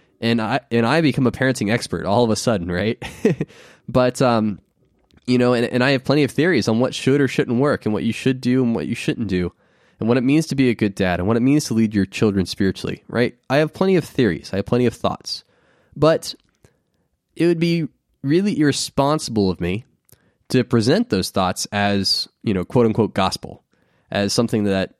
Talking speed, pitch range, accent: 215 wpm, 105-130 Hz, American